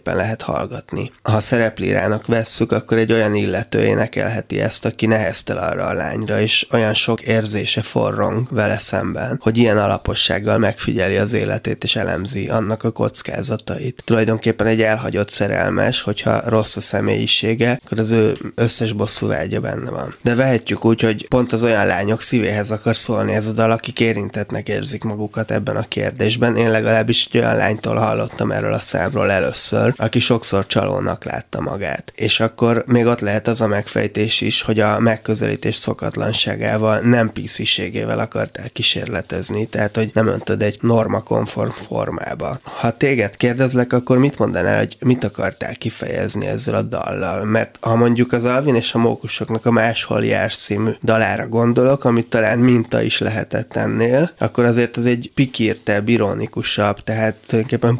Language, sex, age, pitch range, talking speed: Hungarian, male, 20-39, 105-120 Hz, 155 wpm